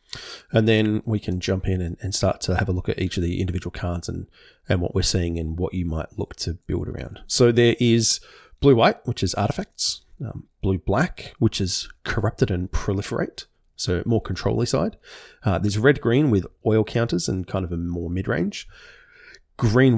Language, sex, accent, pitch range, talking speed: English, male, Australian, 90-120 Hz, 200 wpm